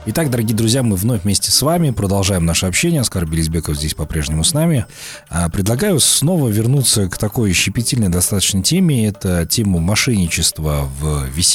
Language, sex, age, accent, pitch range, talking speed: Russian, male, 30-49, native, 80-115 Hz, 155 wpm